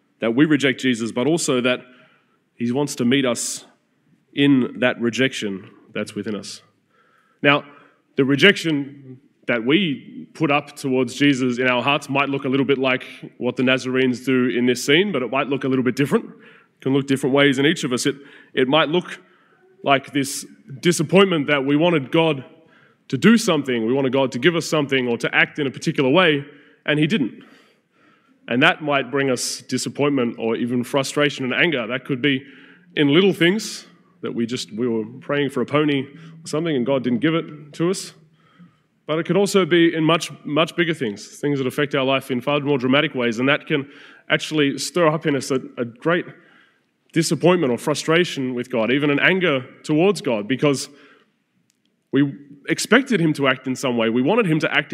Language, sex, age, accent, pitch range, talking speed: English, male, 20-39, Australian, 130-160 Hz, 200 wpm